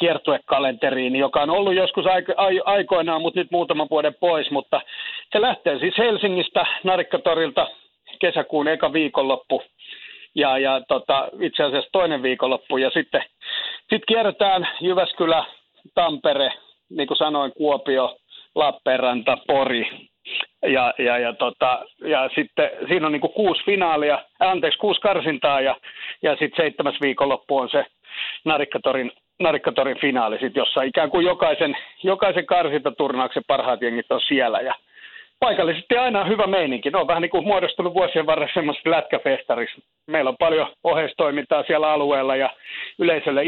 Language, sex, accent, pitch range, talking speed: Finnish, male, native, 135-185 Hz, 135 wpm